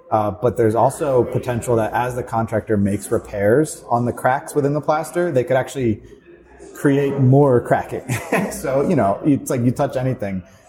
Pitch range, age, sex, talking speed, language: 100-125 Hz, 30-49, male, 175 wpm, English